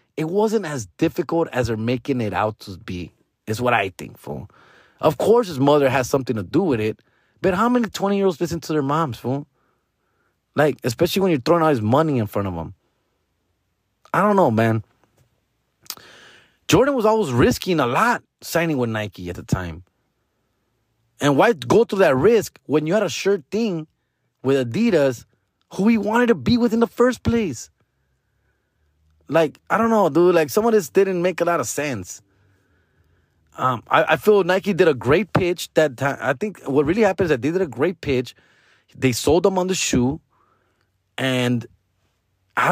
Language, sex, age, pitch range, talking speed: English, male, 30-49, 110-175 Hz, 185 wpm